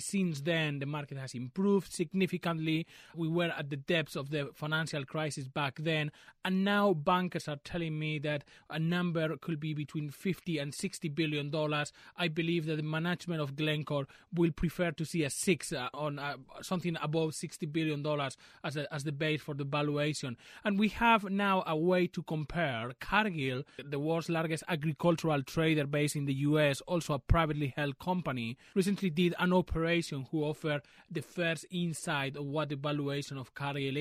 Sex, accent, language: male, Spanish, English